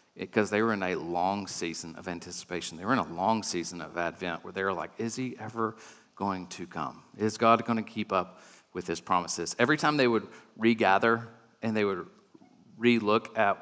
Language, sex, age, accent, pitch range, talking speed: English, male, 40-59, American, 110-135 Hz, 205 wpm